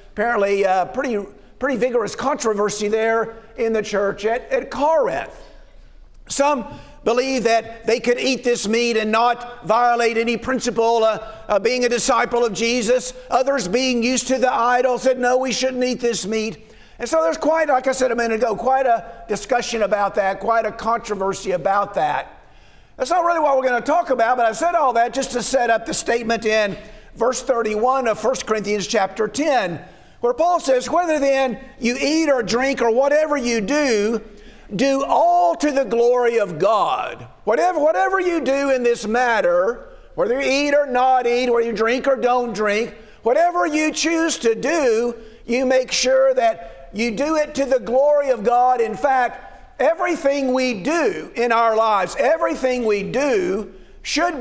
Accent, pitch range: American, 220-270 Hz